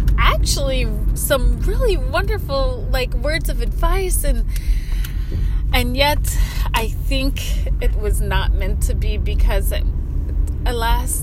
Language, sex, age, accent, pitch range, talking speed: English, female, 20-39, American, 70-95 Hz, 110 wpm